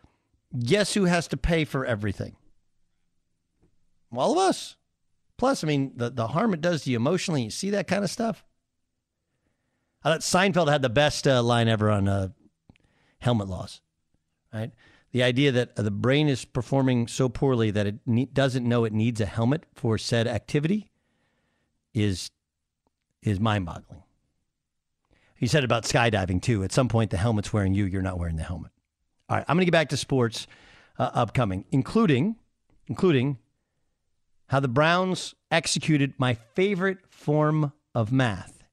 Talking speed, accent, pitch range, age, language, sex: 165 wpm, American, 110-155 Hz, 50-69, English, male